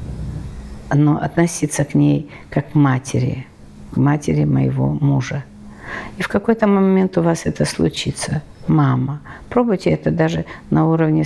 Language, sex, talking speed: Russian, female, 135 wpm